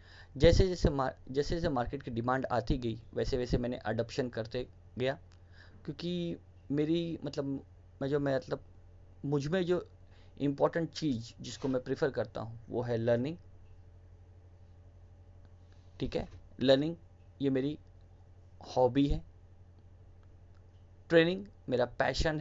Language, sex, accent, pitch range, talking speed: Hindi, male, native, 90-140 Hz, 120 wpm